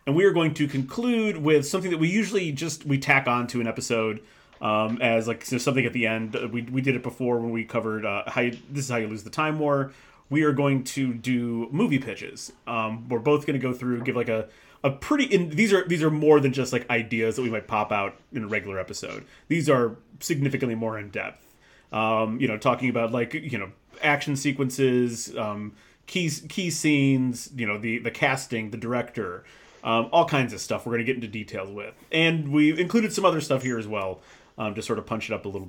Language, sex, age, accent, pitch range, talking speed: English, male, 30-49, American, 115-145 Hz, 240 wpm